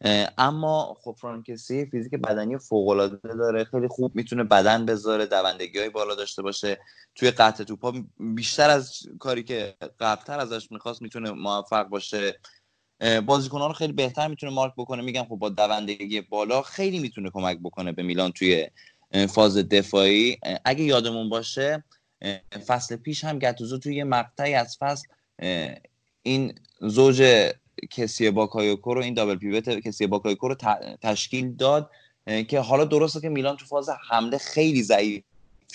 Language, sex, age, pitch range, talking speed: Persian, male, 20-39, 105-135 Hz, 140 wpm